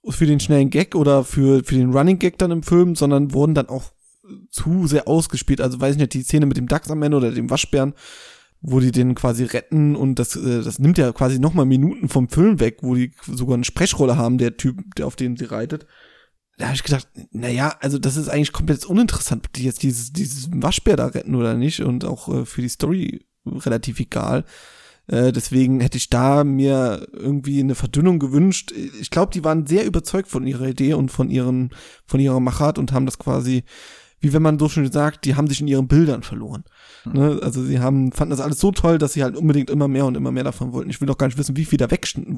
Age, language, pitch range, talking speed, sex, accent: 20-39, German, 130-155 Hz, 230 wpm, male, German